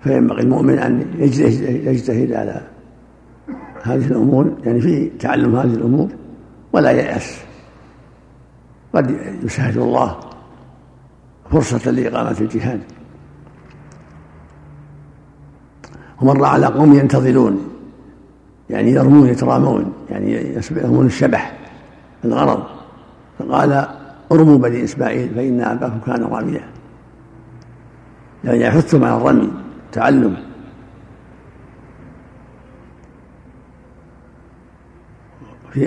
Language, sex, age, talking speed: Arabic, male, 60-79, 75 wpm